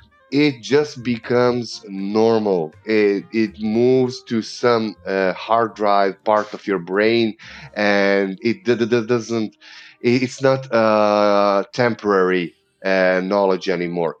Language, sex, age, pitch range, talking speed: Portuguese, male, 30-49, 100-125 Hz, 125 wpm